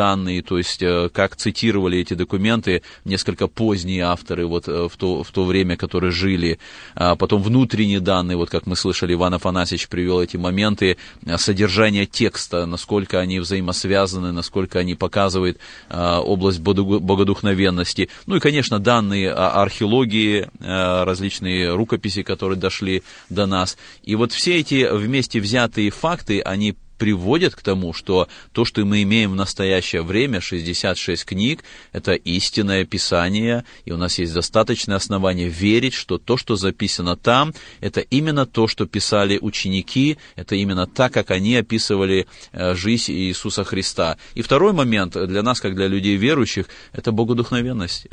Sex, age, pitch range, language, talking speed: male, 30-49, 90-110 Hz, Russian, 145 wpm